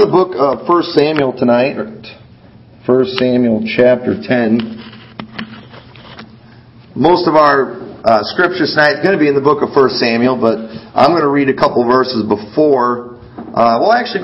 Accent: American